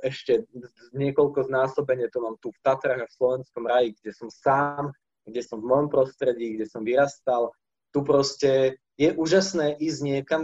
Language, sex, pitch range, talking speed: Slovak, male, 125-160 Hz, 165 wpm